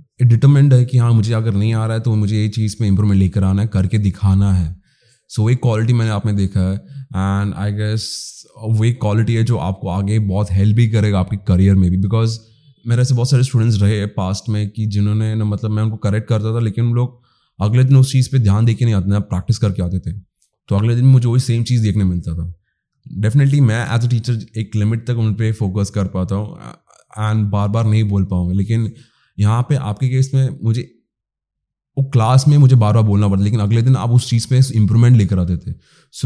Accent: Indian